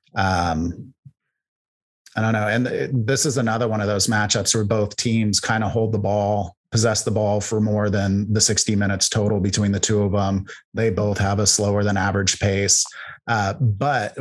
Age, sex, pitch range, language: 30-49, male, 100-115 Hz, English